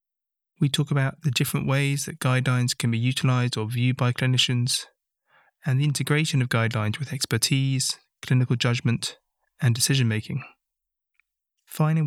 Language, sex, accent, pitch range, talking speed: English, male, British, 120-140 Hz, 140 wpm